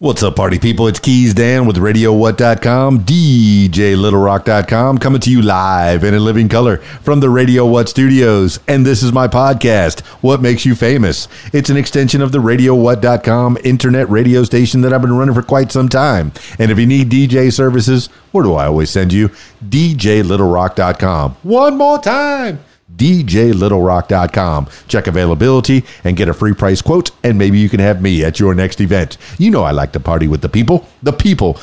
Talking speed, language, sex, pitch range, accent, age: 190 wpm, English, male, 100-130 Hz, American, 40-59